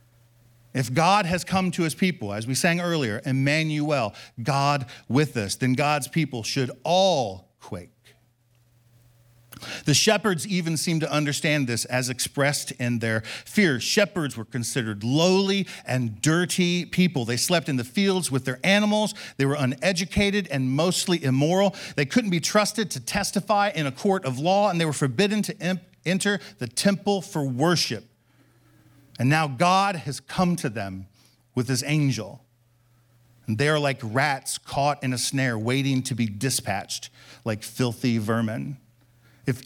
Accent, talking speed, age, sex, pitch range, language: American, 155 wpm, 50-69, male, 120-160 Hz, English